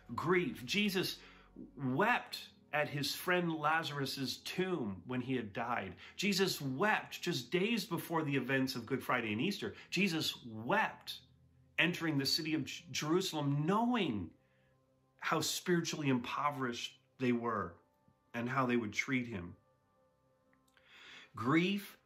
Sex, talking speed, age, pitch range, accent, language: male, 120 wpm, 40-59, 125-175 Hz, American, English